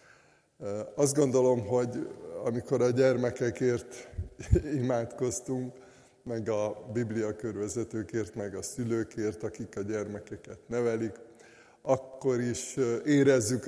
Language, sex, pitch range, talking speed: Hungarian, male, 115-135 Hz, 90 wpm